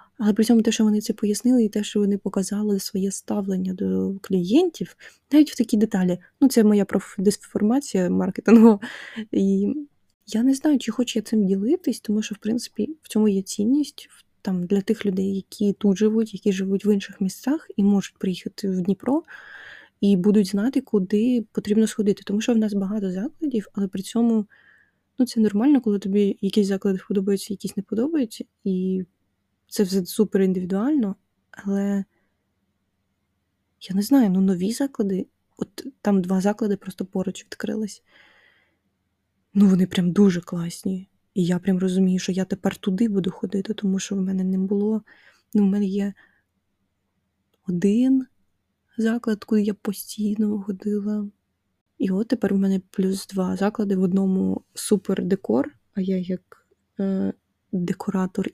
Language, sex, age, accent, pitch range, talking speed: Ukrainian, female, 20-39, native, 190-220 Hz, 155 wpm